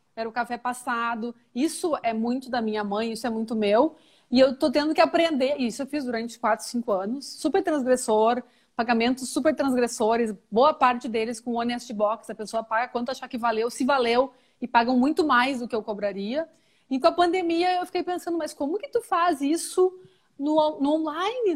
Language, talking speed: Portuguese, 195 wpm